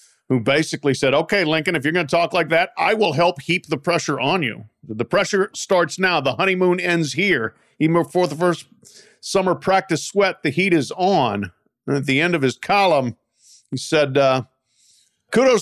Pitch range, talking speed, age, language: 125-175 Hz, 190 wpm, 50-69, English